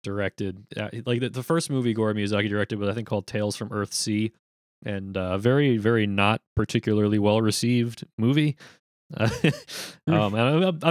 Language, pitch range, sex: English, 100-120 Hz, male